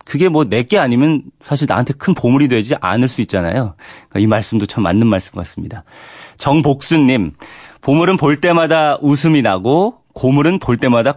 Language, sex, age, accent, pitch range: Korean, male, 30-49, native, 100-150 Hz